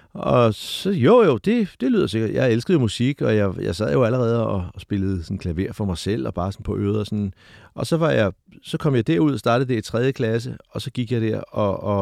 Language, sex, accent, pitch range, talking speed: Danish, male, native, 105-135 Hz, 265 wpm